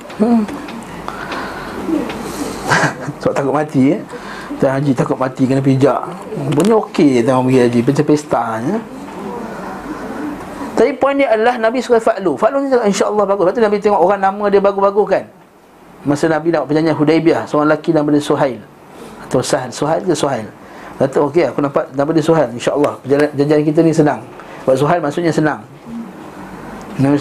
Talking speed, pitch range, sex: 160 wpm, 145-200 Hz, male